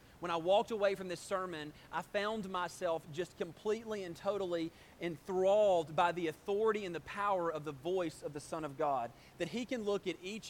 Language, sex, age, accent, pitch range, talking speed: English, male, 30-49, American, 160-190 Hz, 200 wpm